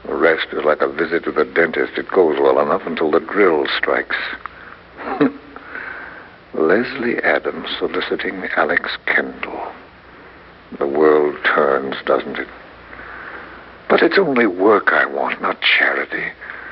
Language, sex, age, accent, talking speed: English, male, 60-79, American, 125 wpm